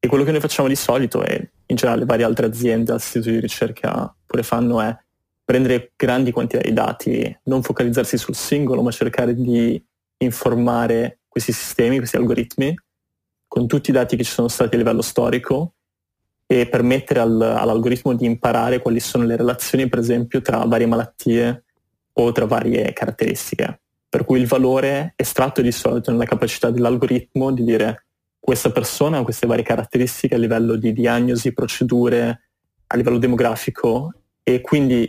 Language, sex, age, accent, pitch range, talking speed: Italian, male, 20-39, native, 115-130 Hz, 160 wpm